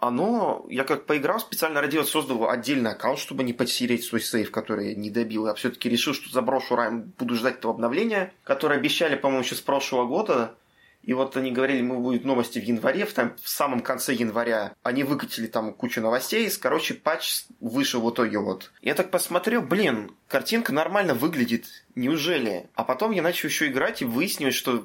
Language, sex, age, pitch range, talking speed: Russian, male, 20-39, 115-140 Hz, 190 wpm